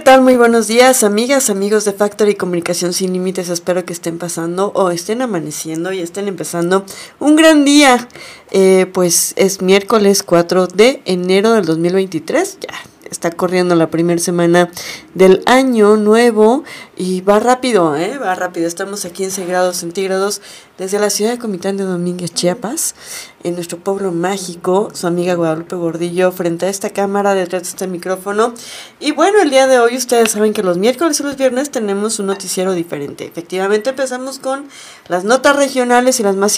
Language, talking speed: Spanish, 170 wpm